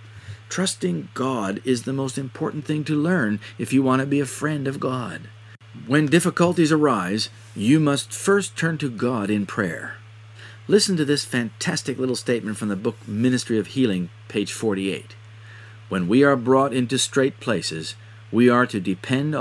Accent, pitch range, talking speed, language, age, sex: American, 110-155 Hz, 165 wpm, English, 50-69, male